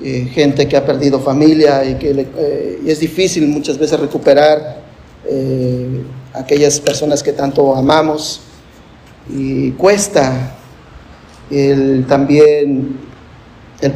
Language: Spanish